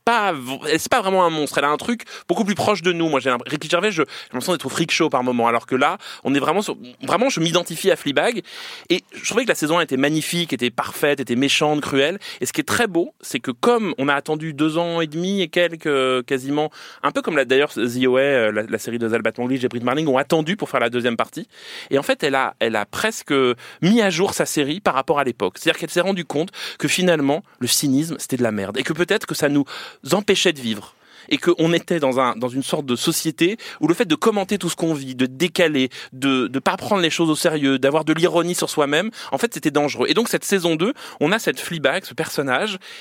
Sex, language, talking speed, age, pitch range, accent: male, French, 255 wpm, 20-39, 135-180 Hz, French